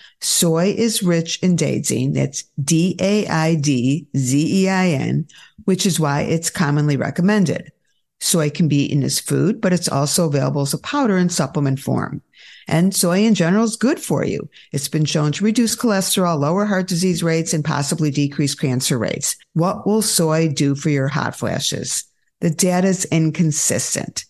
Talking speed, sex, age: 180 wpm, female, 50-69